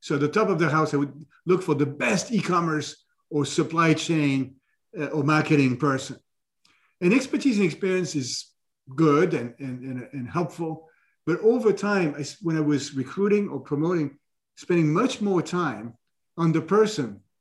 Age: 50-69